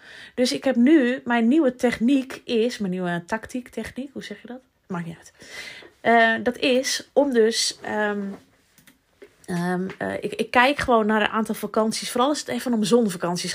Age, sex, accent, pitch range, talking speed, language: 20-39, female, Dutch, 210-250 Hz, 175 wpm, Dutch